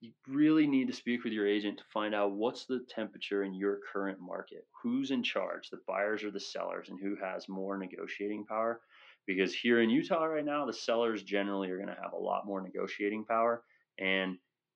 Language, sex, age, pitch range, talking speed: English, male, 30-49, 95-120 Hz, 205 wpm